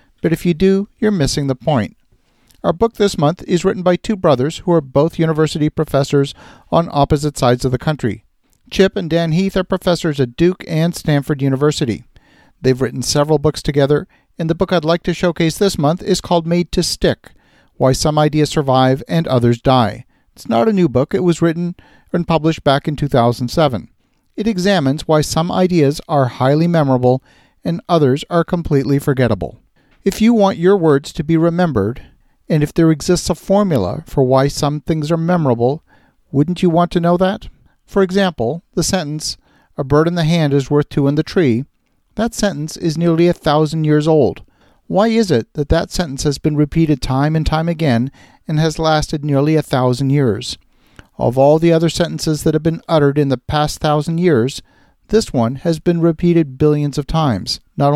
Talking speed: 190 wpm